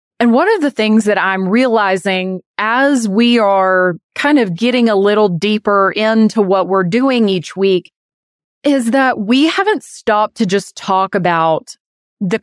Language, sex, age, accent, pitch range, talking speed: English, female, 30-49, American, 190-240 Hz, 160 wpm